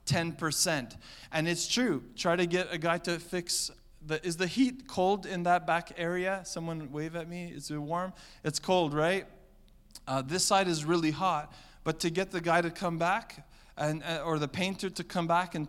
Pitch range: 150-180 Hz